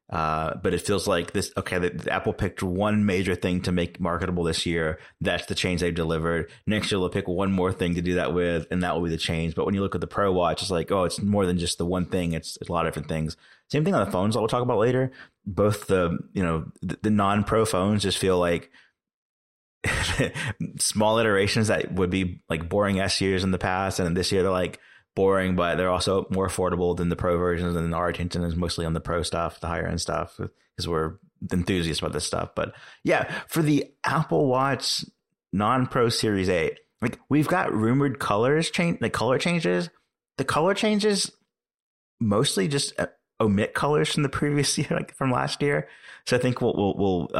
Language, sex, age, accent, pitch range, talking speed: English, male, 30-49, American, 85-105 Hz, 220 wpm